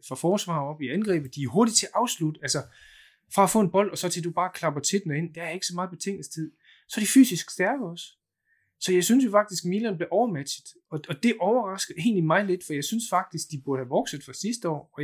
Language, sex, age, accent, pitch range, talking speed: Danish, male, 20-39, native, 140-195 Hz, 265 wpm